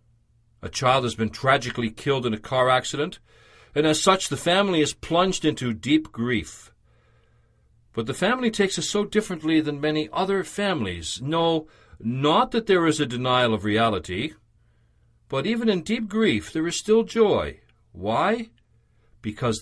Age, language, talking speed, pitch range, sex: 60-79, English, 155 wpm, 115-195 Hz, male